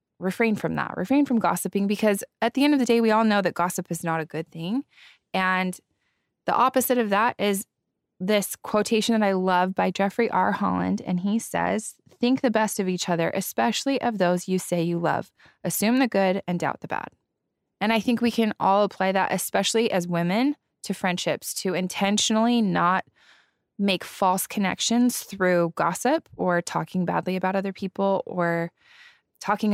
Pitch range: 180-220 Hz